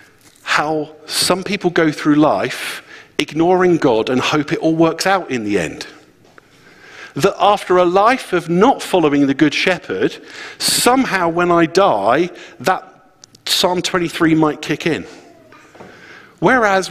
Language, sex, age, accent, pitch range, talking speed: English, male, 50-69, British, 145-190 Hz, 135 wpm